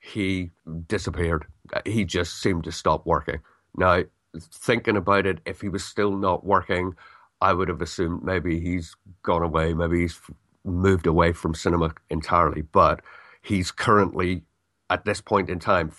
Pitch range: 80-95 Hz